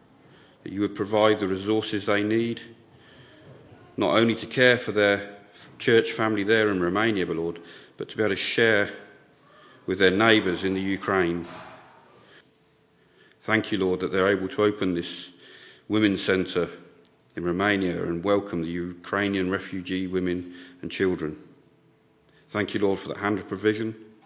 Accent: British